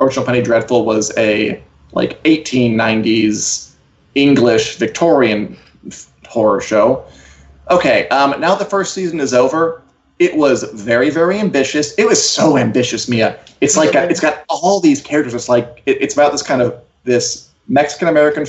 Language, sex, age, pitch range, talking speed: English, male, 20-39, 120-155 Hz, 145 wpm